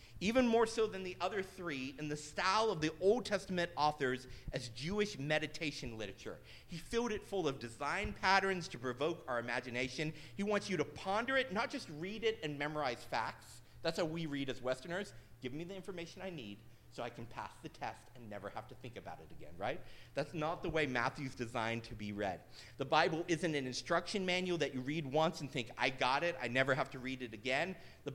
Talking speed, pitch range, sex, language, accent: 215 wpm, 125-185 Hz, male, English, American